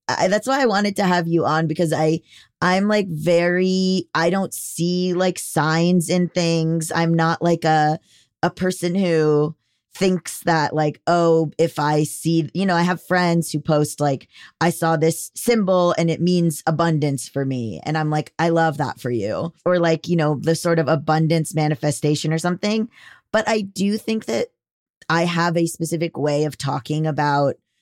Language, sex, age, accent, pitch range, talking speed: English, female, 20-39, American, 150-175 Hz, 185 wpm